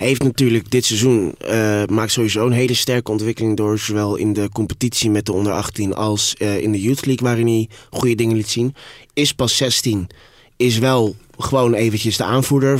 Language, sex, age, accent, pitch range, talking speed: Dutch, male, 20-39, Dutch, 110-125 Hz, 190 wpm